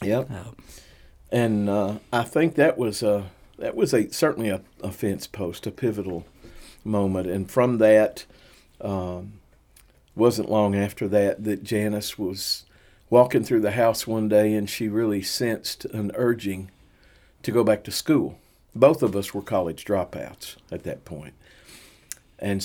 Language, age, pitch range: English, 50-69, 90-110 Hz